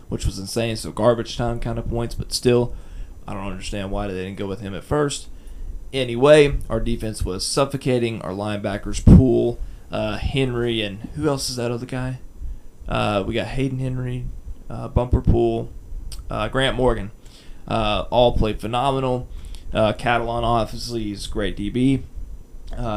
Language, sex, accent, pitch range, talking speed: English, male, American, 95-120 Hz, 160 wpm